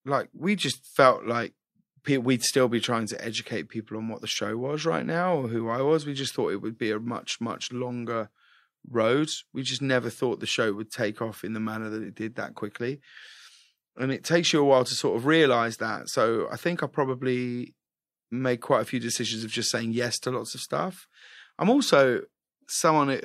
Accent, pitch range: British, 120-145 Hz